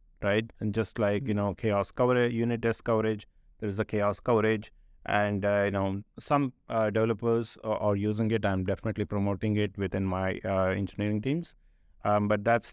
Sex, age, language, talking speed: male, 30-49, English, 185 wpm